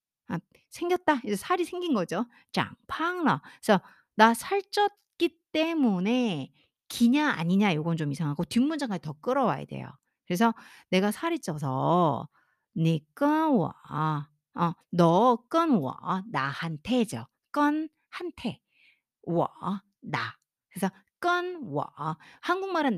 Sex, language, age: female, Korean, 50-69